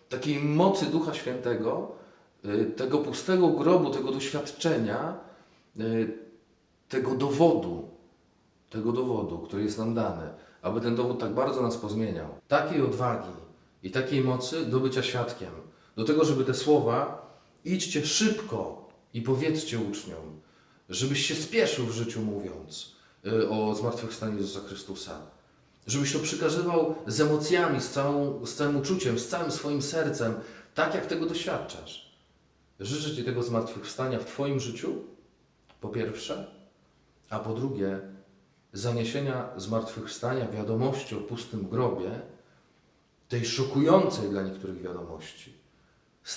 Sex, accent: male, native